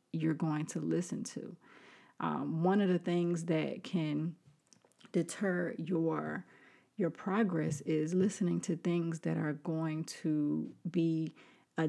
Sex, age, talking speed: female, 30-49, 130 wpm